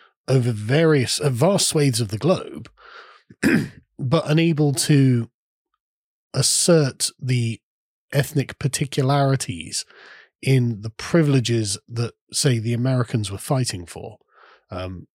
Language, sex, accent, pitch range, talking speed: English, male, British, 110-140 Hz, 105 wpm